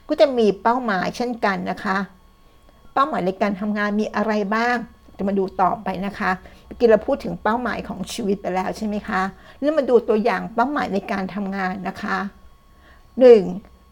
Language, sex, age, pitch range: Thai, female, 60-79, 195-235 Hz